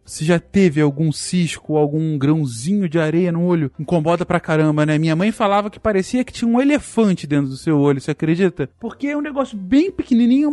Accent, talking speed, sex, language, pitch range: Brazilian, 205 wpm, male, Portuguese, 155-245 Hz